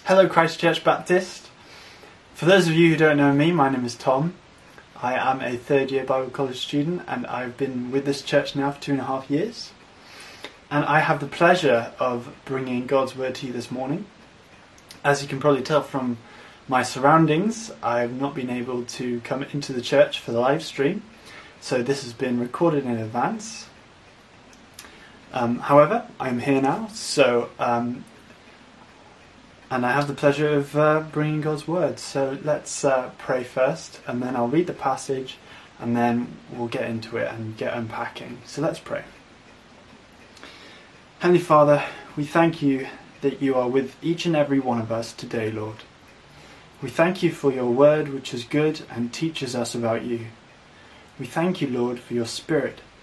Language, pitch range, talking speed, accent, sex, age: English, 125-155 Hz, 175 wpm, British, male, 20-39